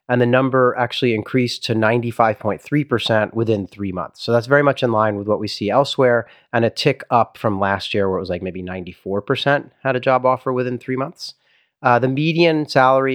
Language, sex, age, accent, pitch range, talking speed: English, male, 30-49, American, 105-135 Hz, 235 wpm